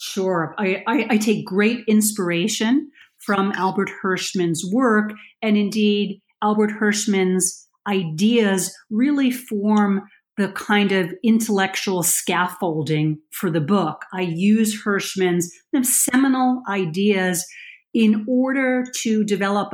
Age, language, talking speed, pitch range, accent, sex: 40-59, English, 105 wpm, 180-220 Hz, American, female